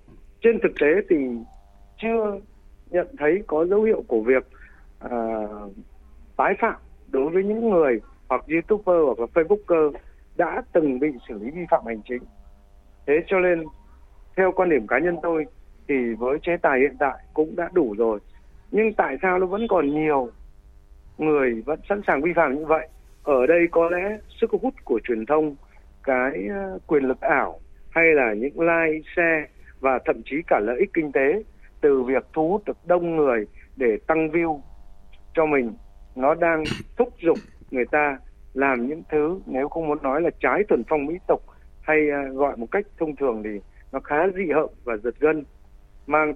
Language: Vietnamese